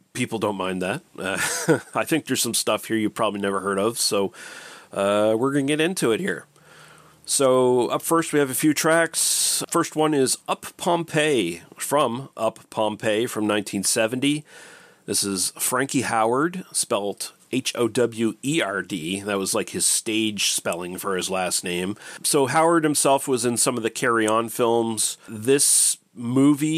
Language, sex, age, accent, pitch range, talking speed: English, male, 40-59, American, 105-140 Hz, 160 wpm